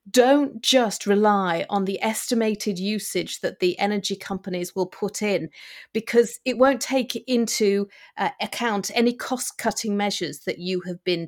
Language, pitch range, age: English, 190-240 Hz, 30-49